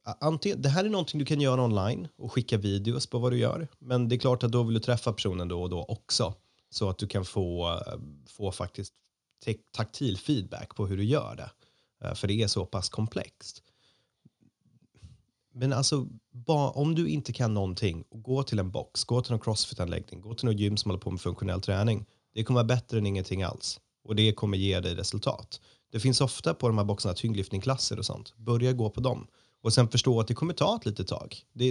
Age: 30-49